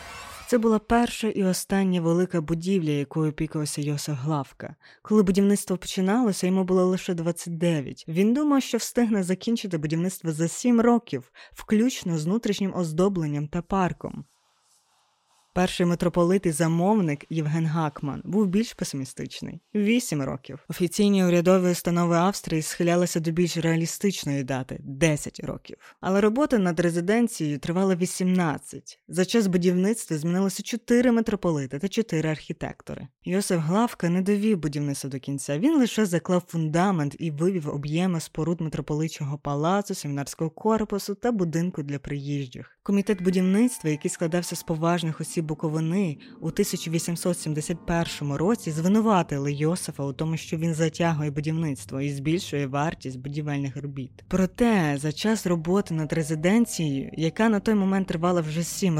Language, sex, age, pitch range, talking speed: Ukrainian, female, 20-39, 155-190 Hz, 135 wpm